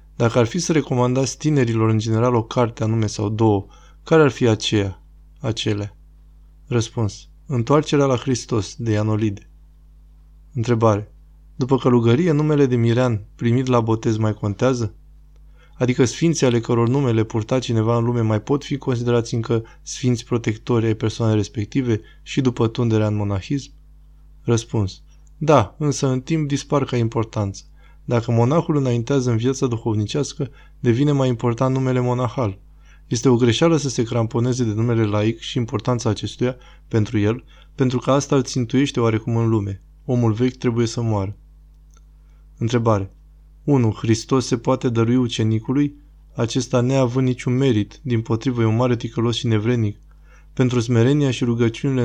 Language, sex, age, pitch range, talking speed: Romanian, male, 20-39, 110-130 Hz, 145 wpm